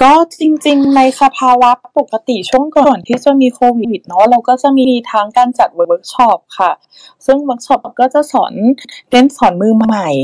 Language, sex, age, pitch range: Thai, female, 20-39, 180-245 Hz